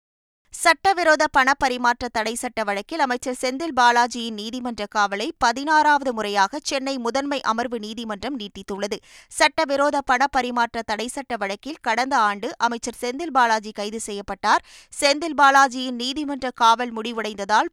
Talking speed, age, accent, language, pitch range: 120 wpm, 20-39, native, Tamil, 220-285 Hz